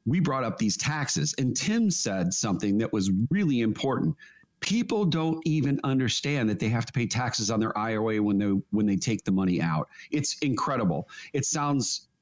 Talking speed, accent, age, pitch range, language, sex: 185 wpm, American, 40-59, 105-155 Hz, English, male